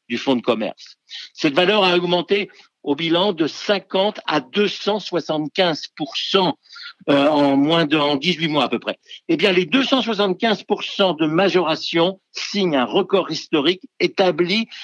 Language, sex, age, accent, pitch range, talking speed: French, male, 60-79, French, 135-205 Hz, 140 wpm